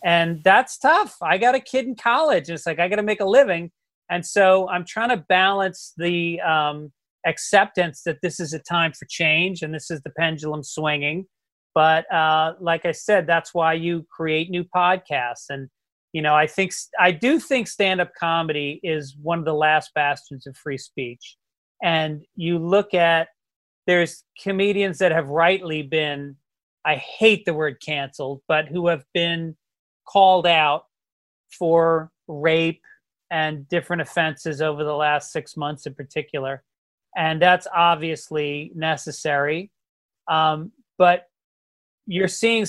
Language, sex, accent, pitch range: English, male, American, 155-185 Hz